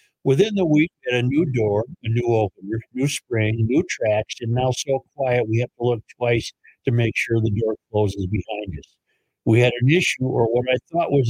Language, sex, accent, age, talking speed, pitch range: English, male, American, 60-79, 220 wpm, 110-135 Hz